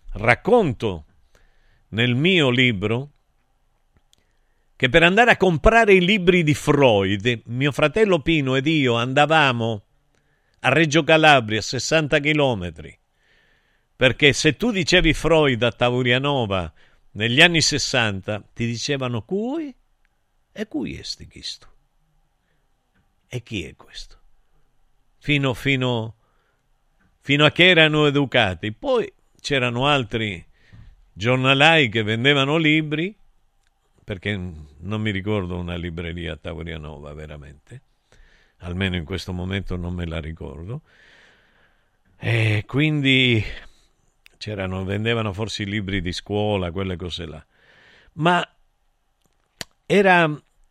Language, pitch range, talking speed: Italian, 100-150 Hz, 105 wpm